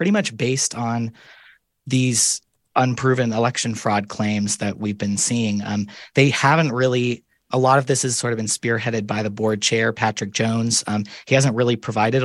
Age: 30-49